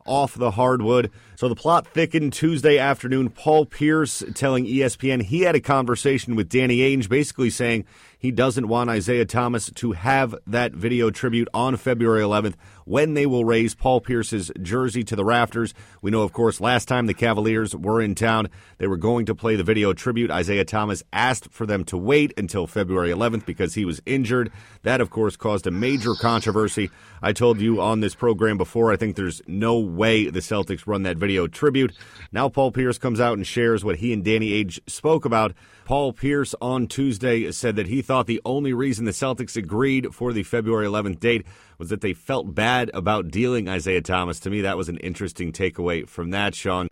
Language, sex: English, male